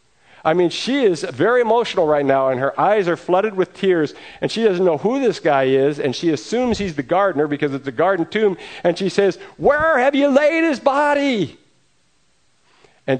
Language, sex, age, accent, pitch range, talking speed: English, male, 50-69, American, 105-160 Hz, 200 wpm